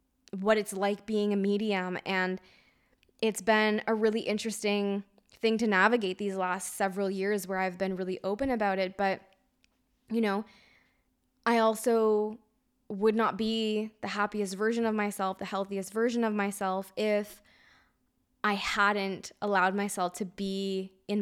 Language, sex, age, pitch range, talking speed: English, female, 10-29, 195-215 Hz, 145 wpm